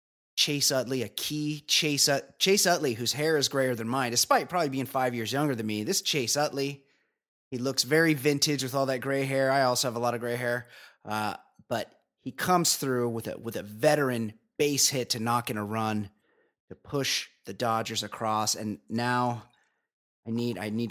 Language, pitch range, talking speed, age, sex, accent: English, 115-145 Hz, 190 wpm, 30-49, male, American